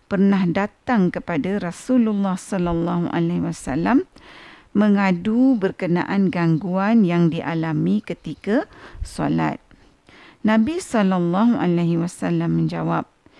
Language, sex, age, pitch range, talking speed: Malay, female, 50-69, 180-235 Hz, 75 wpm